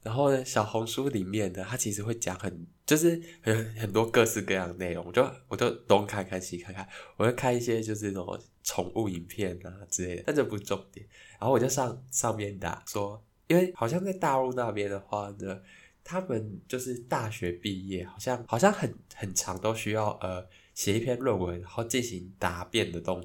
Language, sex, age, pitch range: Chinese, male, 10-29, 95-125 Hz